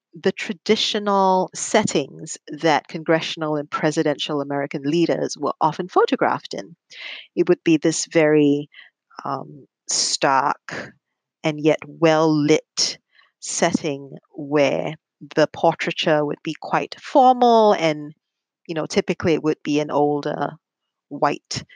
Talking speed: 115 wpm